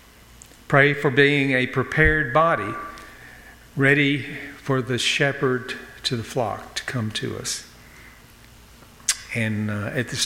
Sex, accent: male, American